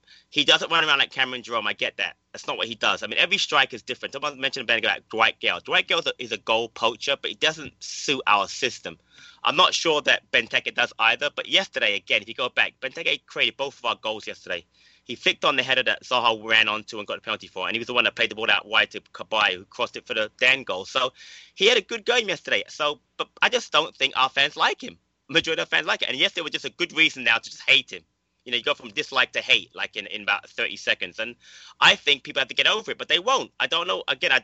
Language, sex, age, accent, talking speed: English, male, 20-39, British, 280 wpm